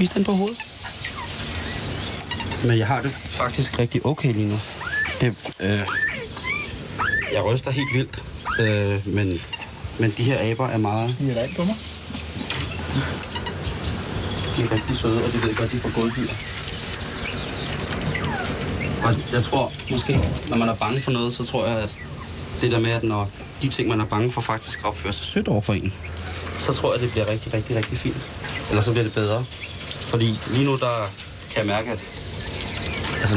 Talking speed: 165 wpm